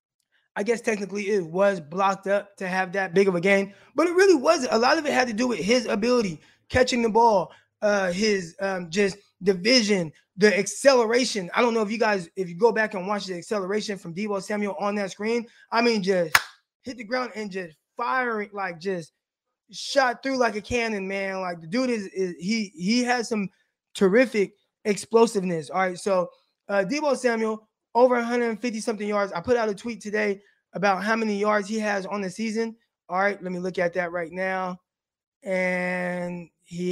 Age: 20-39